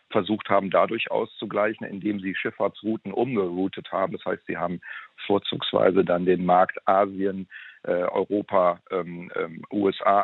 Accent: German